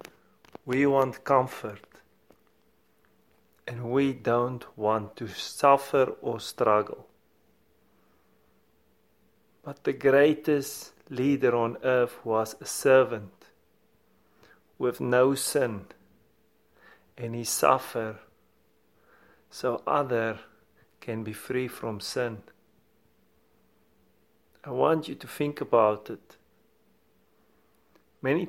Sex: male